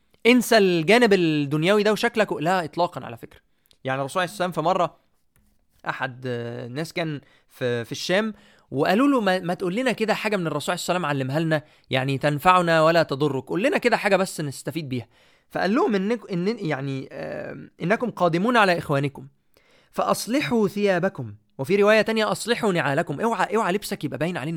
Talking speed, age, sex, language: 155 wpm, 20-39, male, Arabic